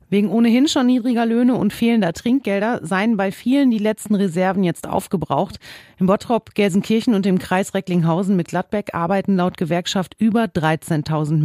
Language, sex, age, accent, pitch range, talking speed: German, female, 40-59, German, 170-220 Hz, 155 wpm